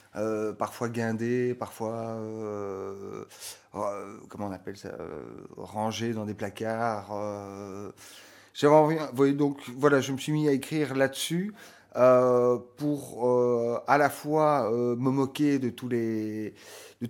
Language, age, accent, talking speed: French, 30-49, French, 140 wpm